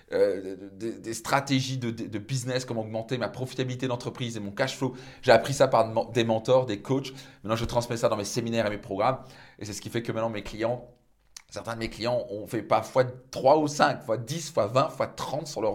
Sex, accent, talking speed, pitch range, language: male, French, 240 wpm, 110-140 Hz, French